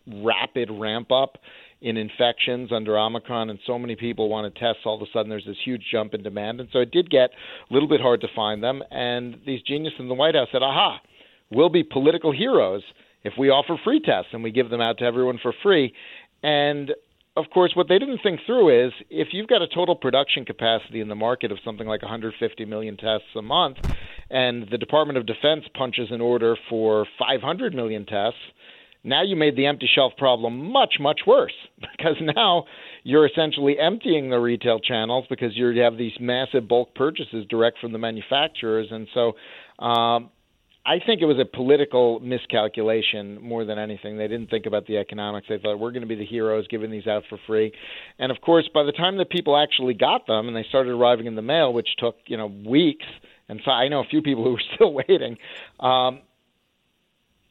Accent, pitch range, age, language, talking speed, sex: American, 110-140 Hz, 40-59, English, 205 wpm, male